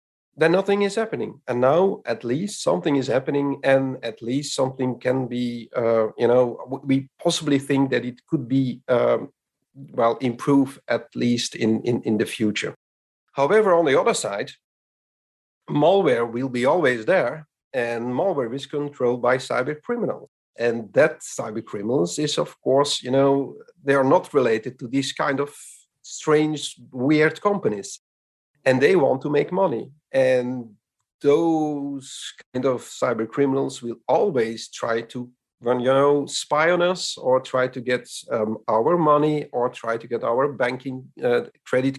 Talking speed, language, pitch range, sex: 160 wpm, English, 120-150 Hz, male